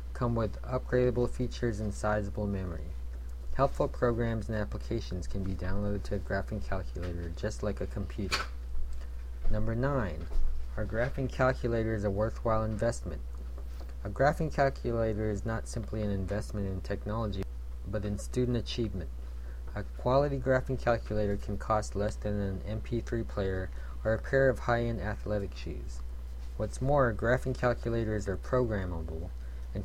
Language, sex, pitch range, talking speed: English, male, 85-120 Hz, 140 wpm